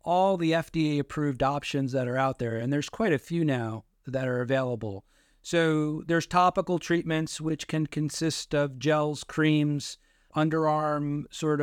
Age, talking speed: 40-59, 155 wpm